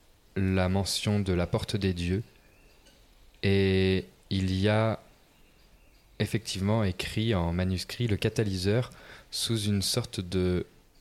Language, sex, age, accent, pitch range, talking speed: French, male, 20-39, French, 90-110 Hz, 115 wpm